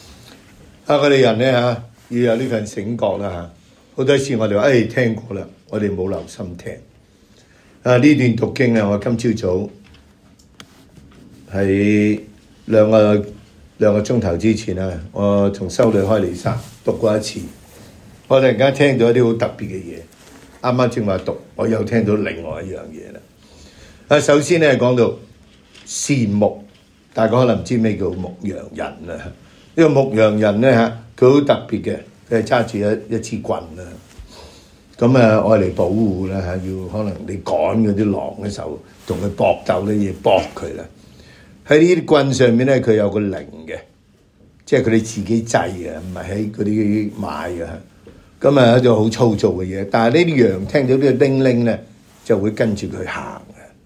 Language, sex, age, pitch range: English, male, 60-79, 100-120 Hz